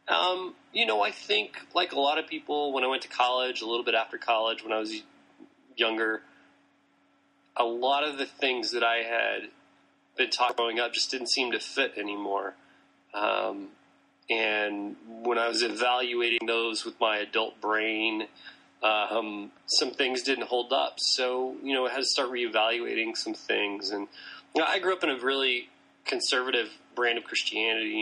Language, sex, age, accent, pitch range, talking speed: English, male, 20-39, American, 110-145 Hz, 170 wpm